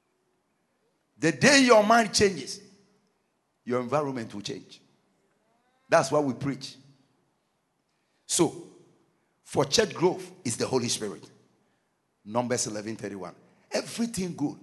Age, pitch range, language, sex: 50-69, 150-230 Hz, English, male